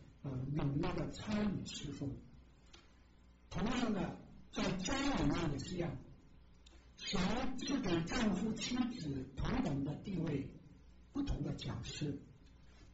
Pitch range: 140-210 Hz